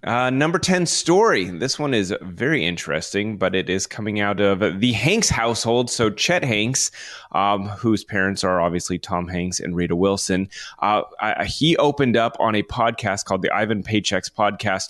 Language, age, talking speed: English, 30-49, 175 wpm